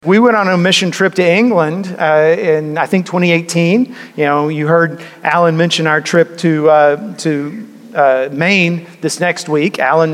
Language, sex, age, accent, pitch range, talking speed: English, male, 40-59, American, 155-190 Hz, 180 wpm